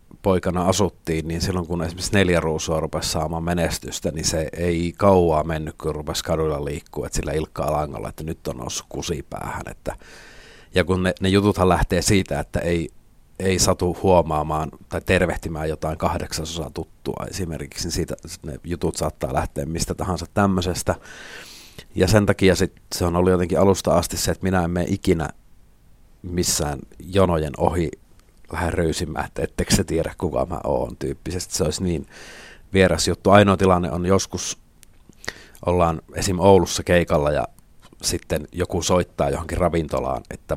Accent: native